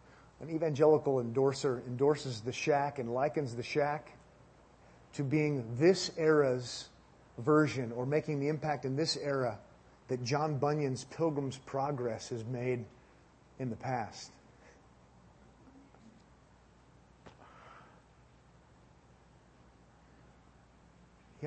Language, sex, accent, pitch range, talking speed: English, male, American, 125-165 Hz, 90 wpm